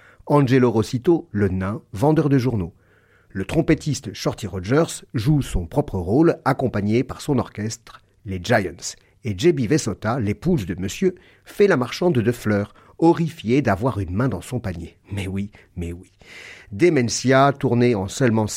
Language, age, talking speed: French, 50-69, 150 wpm